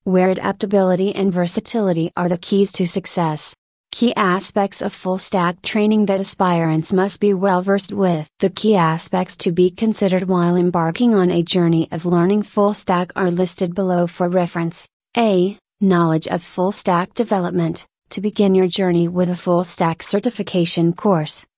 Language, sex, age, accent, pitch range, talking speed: English, female, 30-49, American, 175-195 Hz, 145 wpm